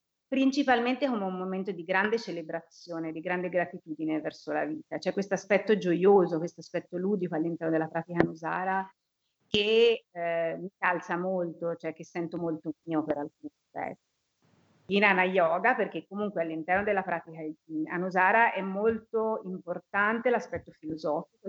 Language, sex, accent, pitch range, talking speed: Italian, female, native, 165-200 Hz, 140 wpm